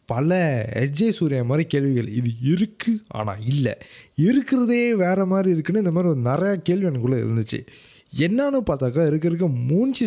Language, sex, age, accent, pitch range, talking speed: Tamil, male, 20-39, native, 125-170 Hz, 145 wpm